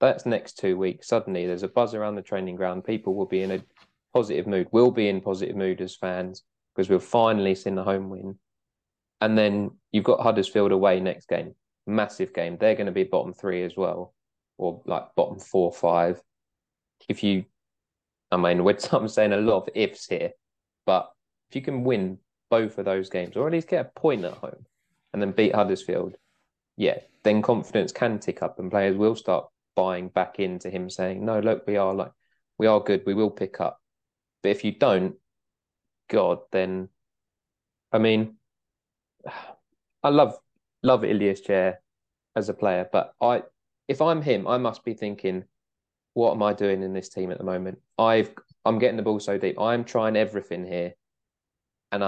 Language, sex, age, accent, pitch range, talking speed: English, male, 20-39, British, 95-110 Hz, 190 wpm